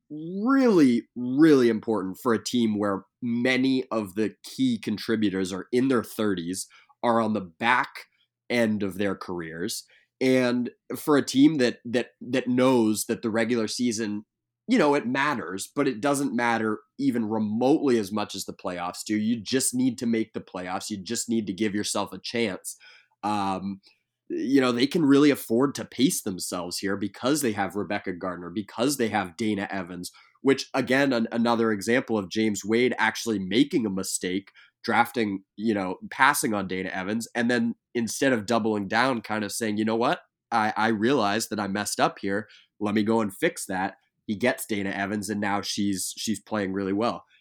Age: 20-39